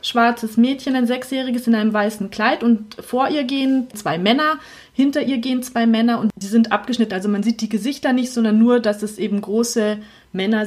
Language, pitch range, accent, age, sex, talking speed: German, 215-255 Hz, German, 30-49, female, 200 wpm